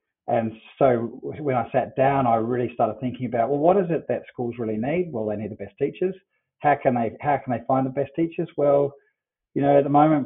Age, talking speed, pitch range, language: 40-59, 240 wpm, 115-140 Hz, English